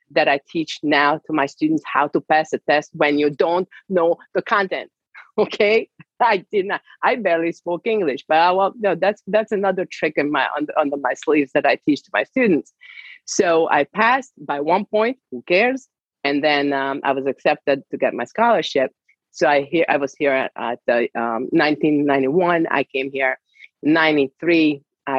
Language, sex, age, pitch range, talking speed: English, female, 40-59, 140-190 Hz, 195 wpm